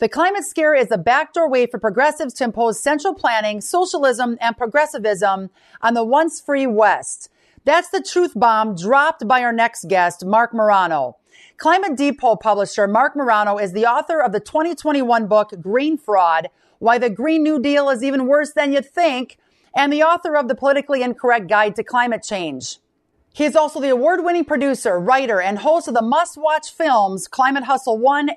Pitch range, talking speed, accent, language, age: 220-300 Hz, 180 wpm, American, English, 40-59